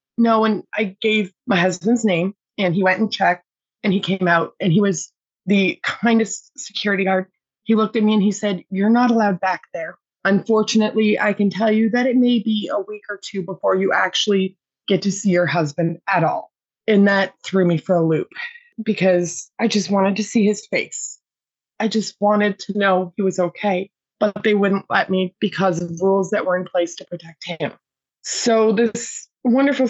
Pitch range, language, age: 190-225 Hz, English, 20-39